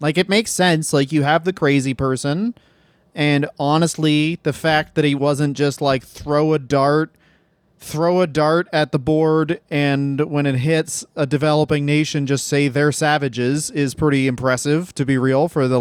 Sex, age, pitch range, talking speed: male, 30-49, 145-195 Hz, 180 wpm